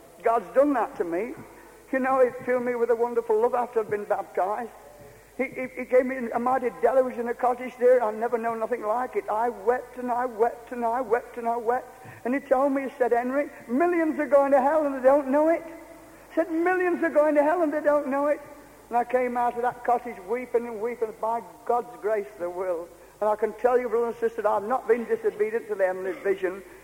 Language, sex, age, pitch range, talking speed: English, male, 60-79, 235-290 Hz, 245 wpm